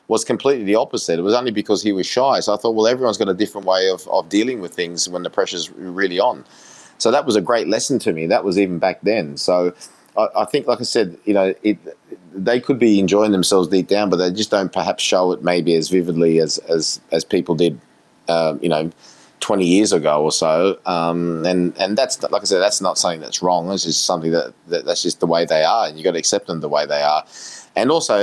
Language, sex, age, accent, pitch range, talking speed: English, male, 30-49, Australian, 85-100 Hz, 250 wpm